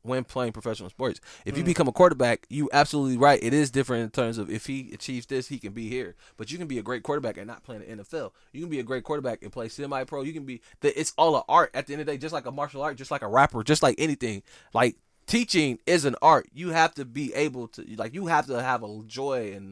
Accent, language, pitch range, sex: American, English, 115-140 Hz, male